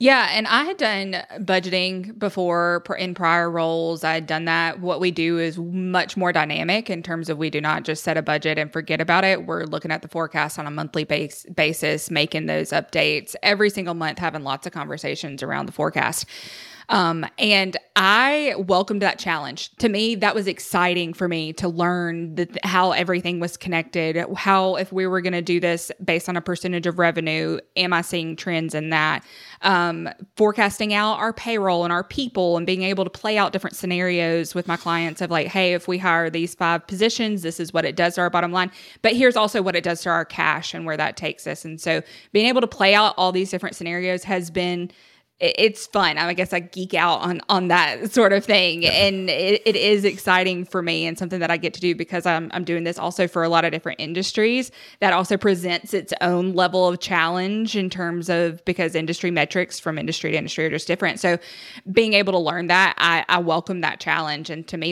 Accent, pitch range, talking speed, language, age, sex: American, 165-190 Hz, 215 wpm, English, 20-39, female